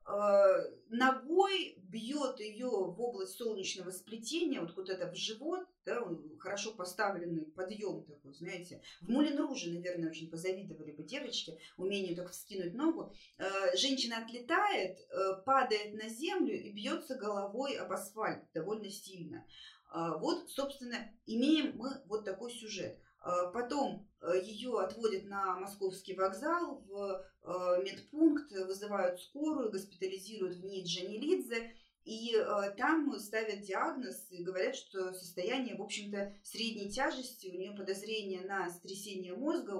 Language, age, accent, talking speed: Russian, 20-39, native, 120 wpm